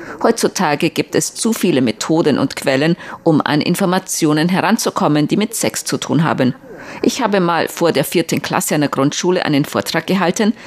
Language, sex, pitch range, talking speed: German, female, 150-200 Hz, 170 wpm